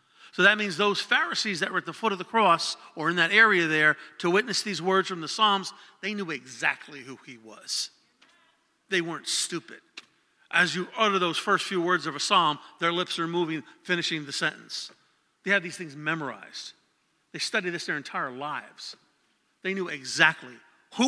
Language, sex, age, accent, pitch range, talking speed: English, male, 50-69, American, 150-200 Hz, 190 wpm